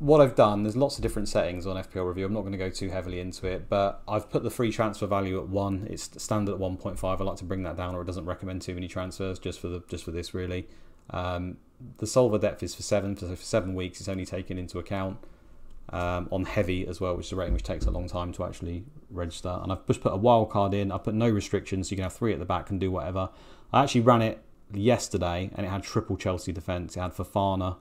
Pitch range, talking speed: 90-105 Hz, 265 wpm